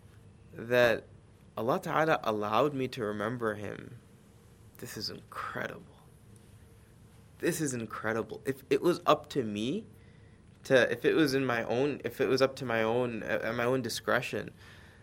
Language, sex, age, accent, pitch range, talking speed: English, male, 20-39, American, 110-125 Hz, 150 wpm